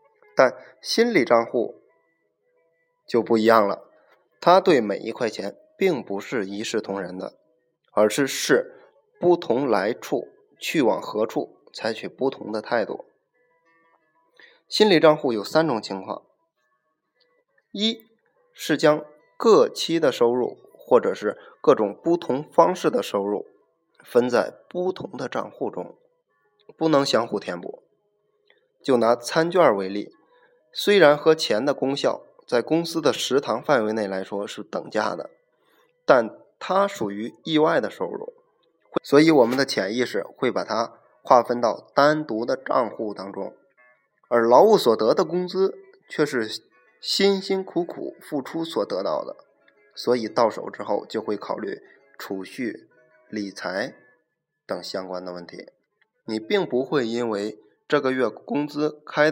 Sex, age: male, 20-39